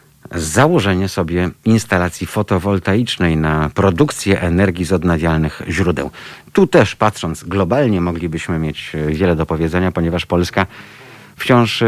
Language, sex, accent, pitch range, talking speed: Polish, male, native, 85-105 Hz, 110 wpm